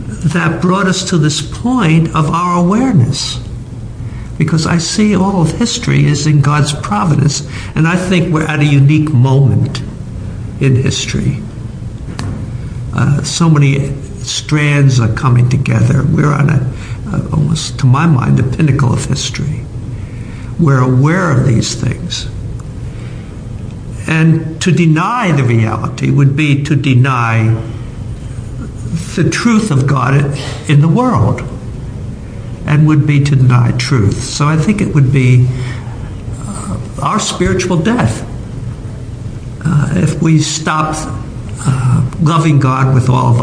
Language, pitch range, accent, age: English, 120-150 Hz, American, 60-79